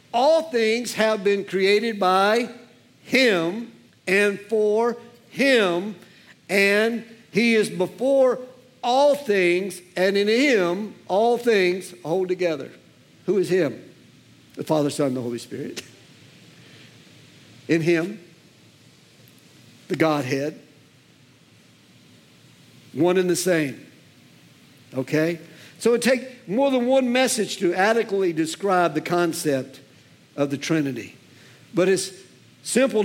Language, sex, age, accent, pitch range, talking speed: English, male, 60-79, American, 180-235 Hz, 110 wpm